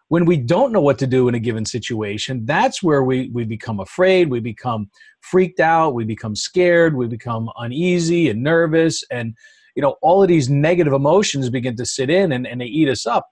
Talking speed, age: 210 wpm, 40-59